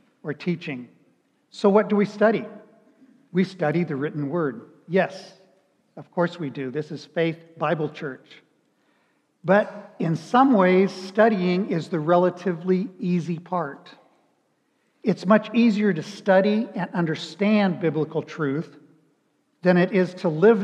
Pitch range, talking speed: 150-190 Hz, 135 wpm